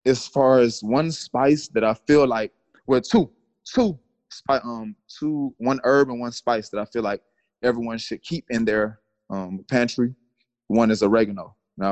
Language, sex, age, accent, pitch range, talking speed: English, male, 20-39, American, 115-140 Hz, 170 wpm